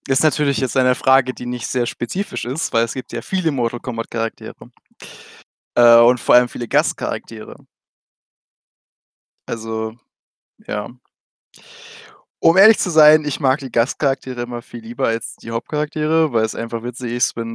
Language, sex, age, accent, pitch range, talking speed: German, male, 20-39, German, 115-140 Hz, 155 wpm